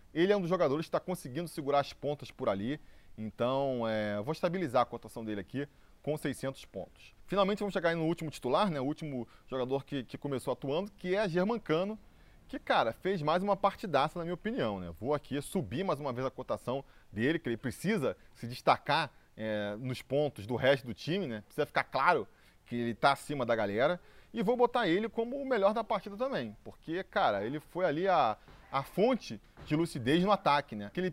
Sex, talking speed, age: male, 210 wpm, 20-39